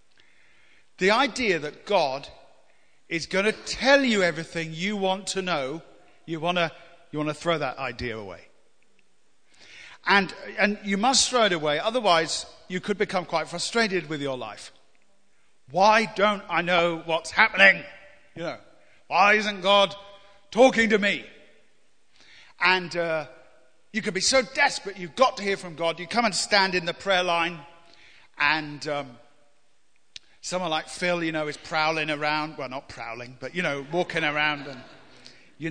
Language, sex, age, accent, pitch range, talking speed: English, male, 40-59, British, 155-205 Hz, 155 wpm